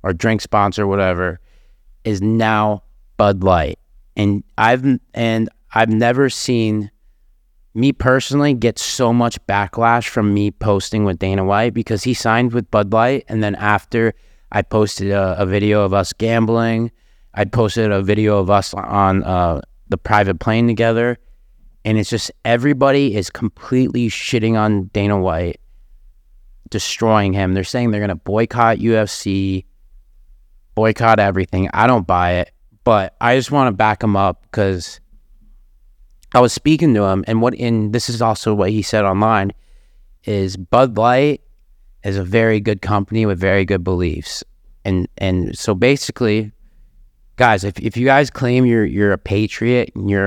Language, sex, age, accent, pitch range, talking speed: English, male, 30-49, American, 95-115 Hz, 160 wpm